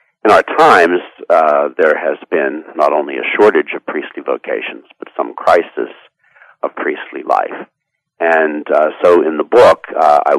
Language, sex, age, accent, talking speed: English, male, 60-79, American, 160 wpm